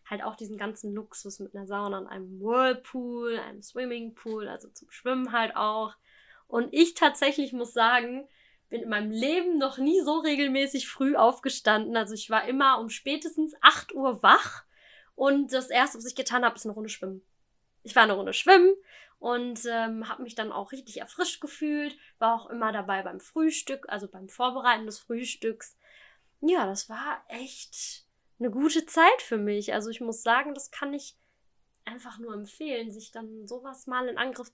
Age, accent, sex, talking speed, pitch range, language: 10-29, German, female, 180 wpm, 215-265 Hz, German